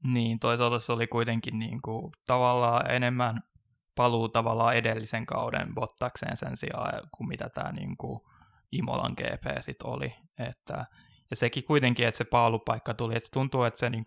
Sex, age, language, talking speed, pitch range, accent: male, 20-39, Finnish, 165 wpm, 115-125 Hz, native